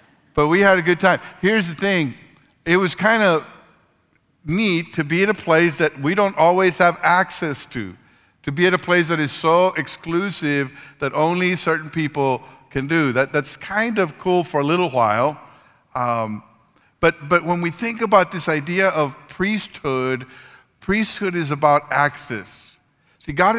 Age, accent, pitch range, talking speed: 50-69, American, 140-175 Hz, 170 wpm